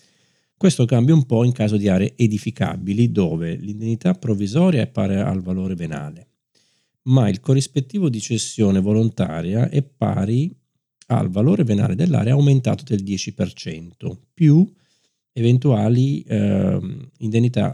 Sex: male